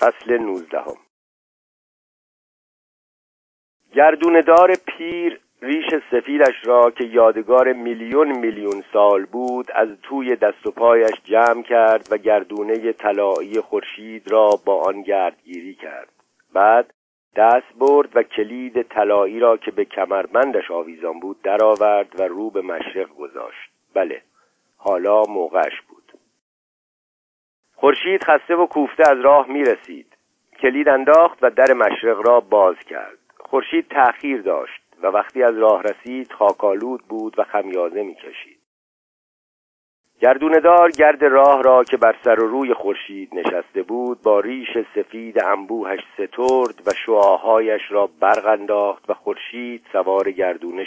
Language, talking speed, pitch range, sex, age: Persian, 125 wpm, 110-150 Hz, male, 50-69